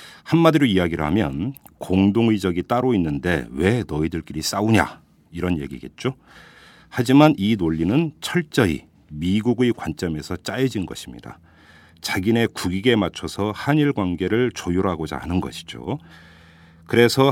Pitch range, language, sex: 80-120 Hz, Korean, male